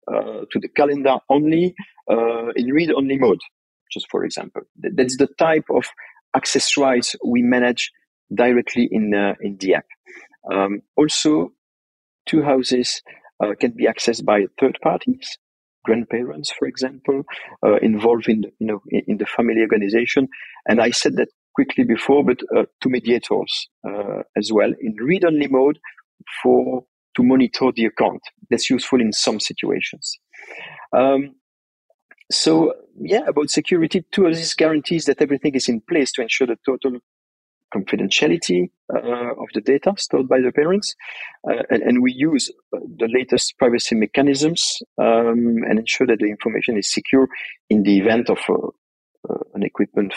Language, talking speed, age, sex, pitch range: English, 155 wpm, 50-69, male, 115-150 Hz